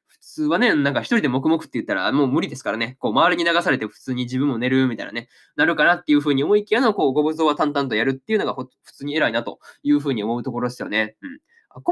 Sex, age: male, 20-39